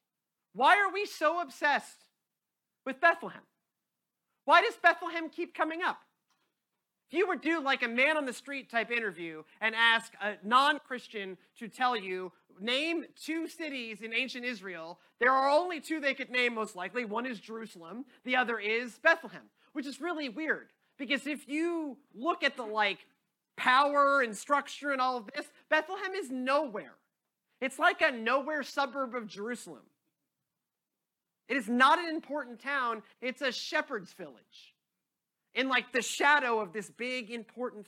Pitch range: 215-280 Hz